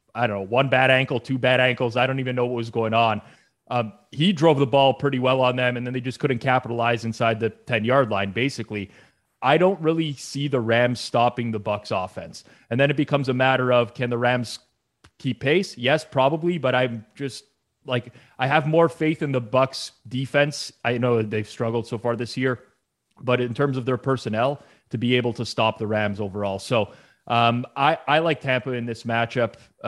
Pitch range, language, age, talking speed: 115-130 Hz, English, 20-39, 210 wpm